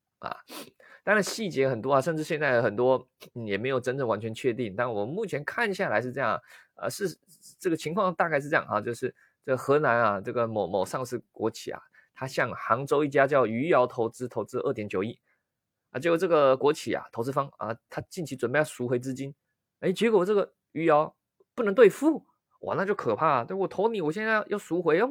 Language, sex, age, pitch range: Chinese, male, 20-39, 115-160 Hz